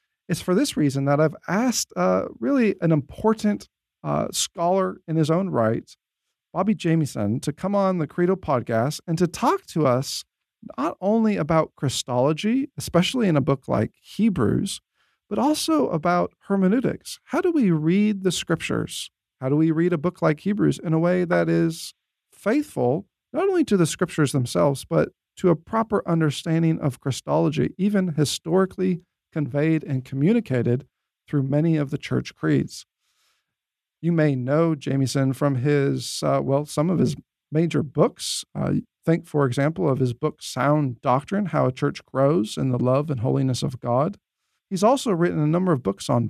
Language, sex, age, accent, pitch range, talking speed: English, male, 40-59, American, 140-185 Hz, 165 wpm